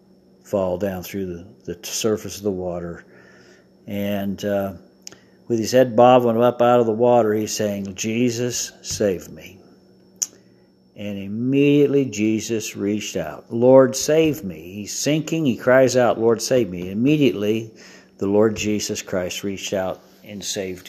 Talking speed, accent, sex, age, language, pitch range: 145 wpm, American, male, 50-69, English, 100-125 Hz